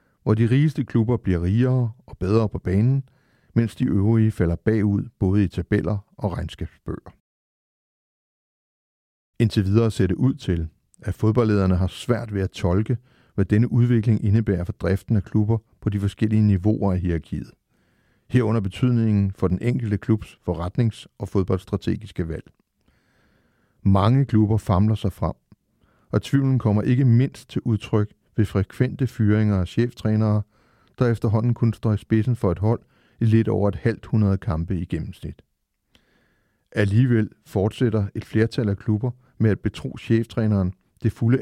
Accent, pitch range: native, 100-115 Hz